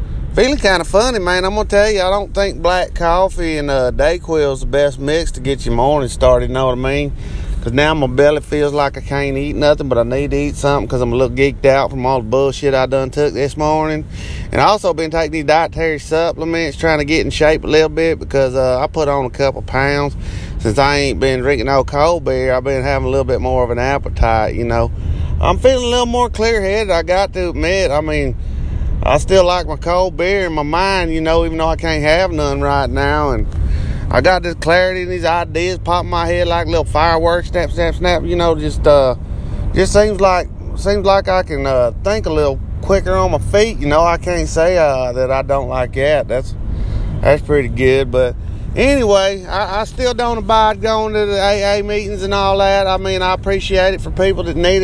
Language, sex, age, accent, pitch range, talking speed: English, male, 30-49, American, 130-180 Hz, 235 wpm